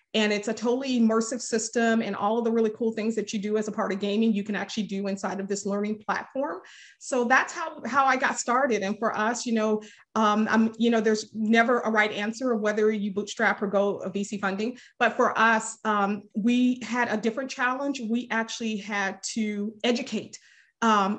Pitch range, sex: 210-240 Hz, female